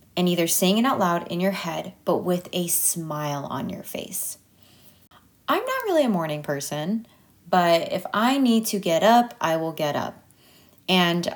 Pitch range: 165-210 Hz